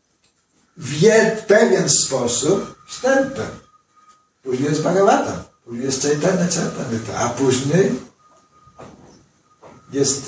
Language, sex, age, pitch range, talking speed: Polish, male, 60-79, 135-175 Hz, 95 wpm